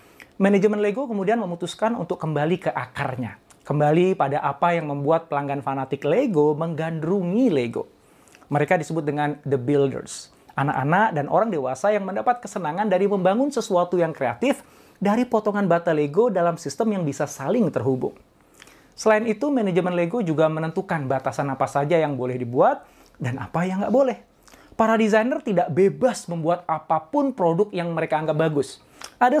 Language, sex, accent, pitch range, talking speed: Indonesian, male, native, 145-205 Hz, 150 wpm